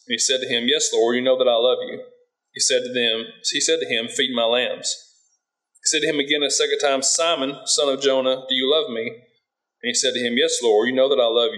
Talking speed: 265 wpm